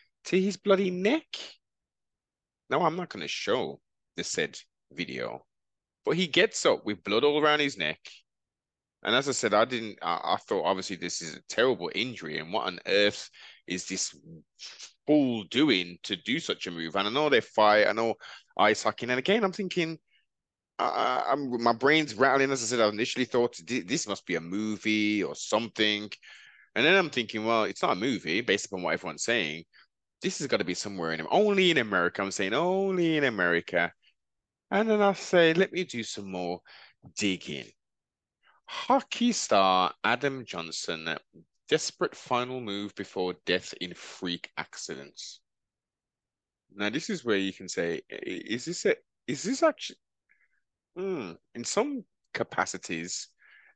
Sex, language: male, English